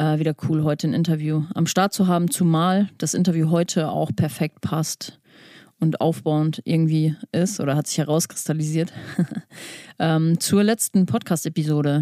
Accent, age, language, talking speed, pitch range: German, 30-49, German, 145 wpm, 160-185 Hz